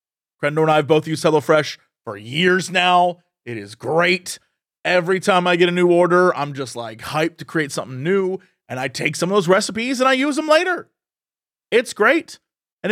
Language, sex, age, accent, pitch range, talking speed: English, male, 30-49, American, 155-260 Hz, 200 wpm